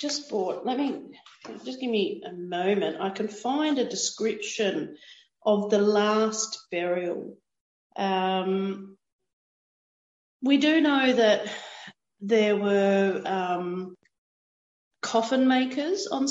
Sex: female